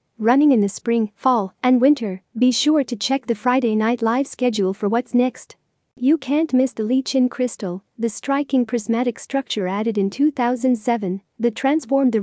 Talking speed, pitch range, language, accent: 175 wpm, 220-265 Hz, English, American